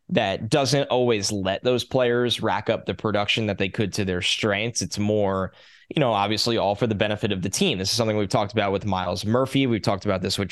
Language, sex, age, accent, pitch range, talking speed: English, male, 10-29, American, 100-125 Hz, 240 wpm